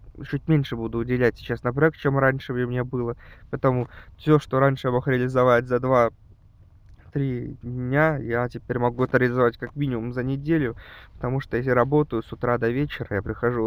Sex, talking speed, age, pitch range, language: male, 185 wpm, 20-39, 110-150 Hz, Russian